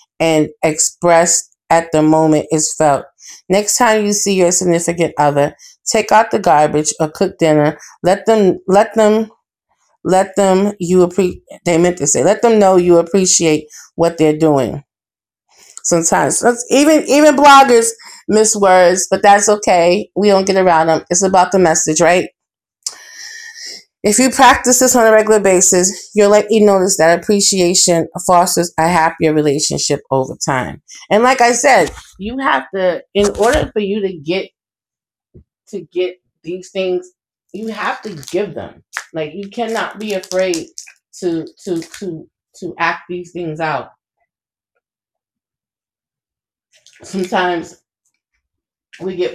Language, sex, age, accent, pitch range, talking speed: English, female, 30-49, American, 165-205 Hz, 145 wpm